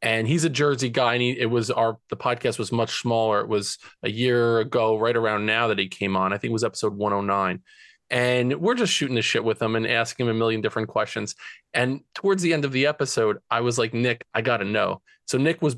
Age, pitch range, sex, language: 20-39, 115-140 Hz, male, English